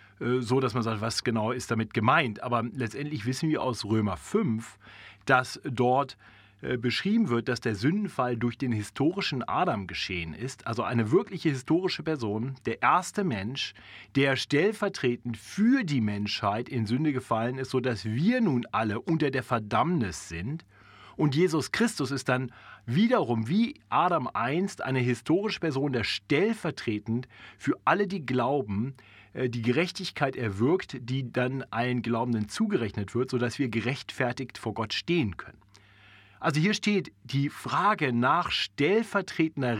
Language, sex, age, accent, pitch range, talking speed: German, male, 40-59, German, 115-145 Hz, 145 wpm